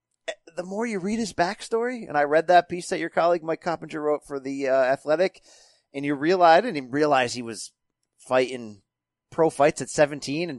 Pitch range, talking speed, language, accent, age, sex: 135-180 Hz, 205 wpm, English, American, 30-49, male